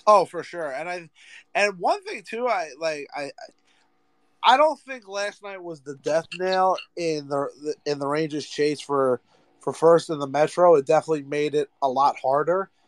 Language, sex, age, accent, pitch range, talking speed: English, male, 30-49, American, 145-190 Hz, 185 wpm